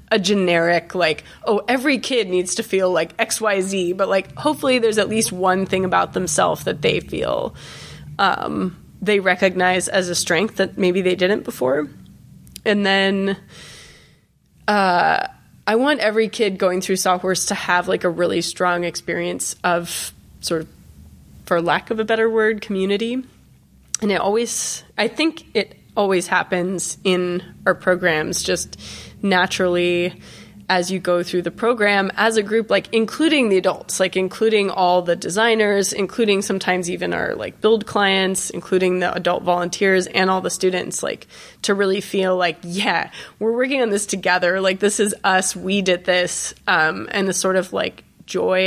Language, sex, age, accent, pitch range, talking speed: English, female, 20-39, American, 180-210 Hz, 165 wpm